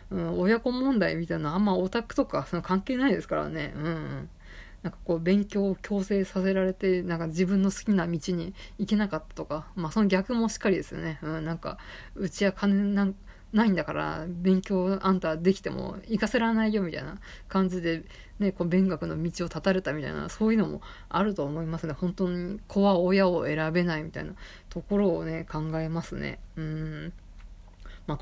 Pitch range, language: 165-220 Hz, Japanese